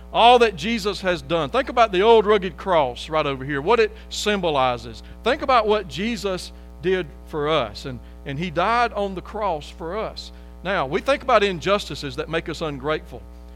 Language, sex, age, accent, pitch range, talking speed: English, male, 40-59, American, 145-215 Hz, 185 wpm